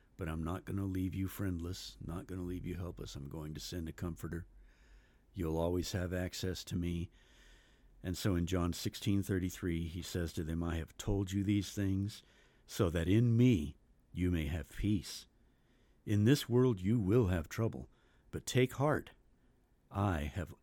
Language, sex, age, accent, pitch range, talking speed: English, male, 60-79, American, 85-110 Hz, 180 wpm